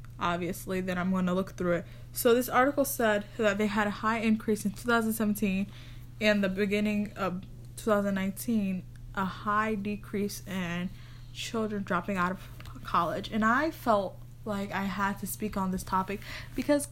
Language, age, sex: English, 10-29, female